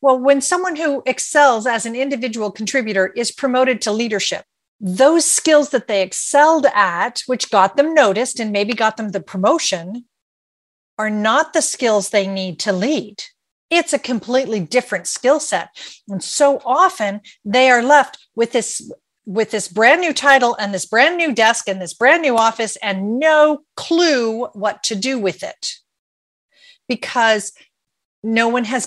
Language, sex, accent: English, female, American